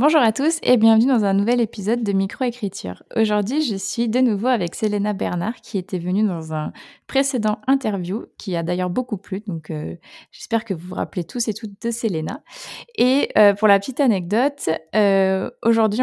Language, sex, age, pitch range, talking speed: French, female, 20-39, 180-225 Hz, 190 wpm